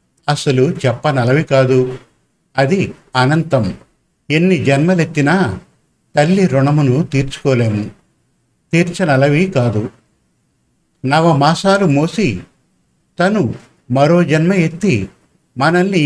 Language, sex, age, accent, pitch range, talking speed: Telugu, male, 50-69, native, 135-180 Hz, 75 wpm